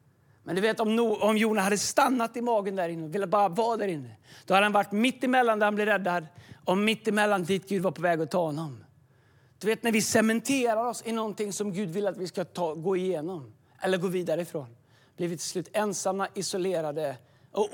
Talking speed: 230 wpm